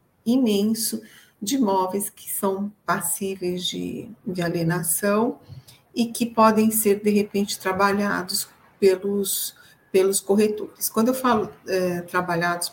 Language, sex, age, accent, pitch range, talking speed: Portuguese, female, 50-69, Brazilian, 180-205 Hz, 110 wpm